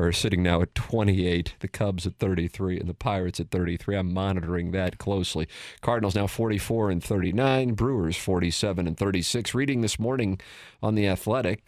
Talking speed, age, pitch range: 170 wpm, 40-59, 95-115 Hz